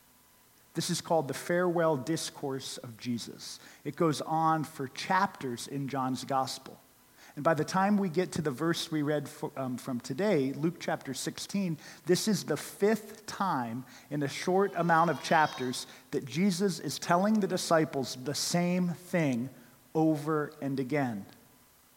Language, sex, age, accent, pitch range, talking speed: English, male, 40-59, American, 140-190 Hz, 155 wpm